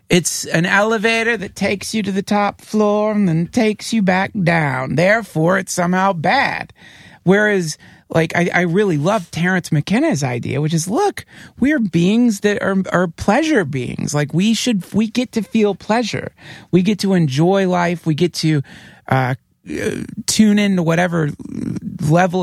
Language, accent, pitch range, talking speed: English, American, 155-200 Hz, 160 wpm